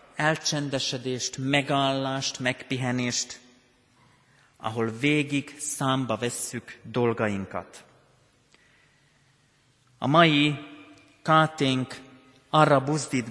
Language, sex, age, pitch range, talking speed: Hungarian, male, 30-49, 125-150 Hz, 60 wpm